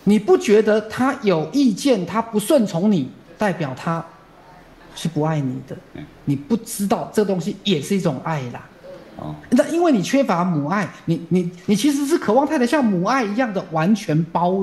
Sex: male